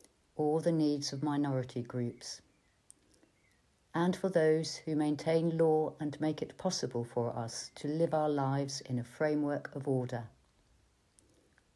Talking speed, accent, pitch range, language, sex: 140 wpm, British, 125-155 Hz, English, female